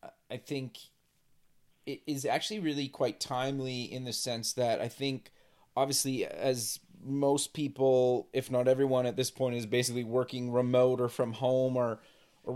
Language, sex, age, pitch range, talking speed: English, male, 30-49, 130-150 Hz, 160 wpm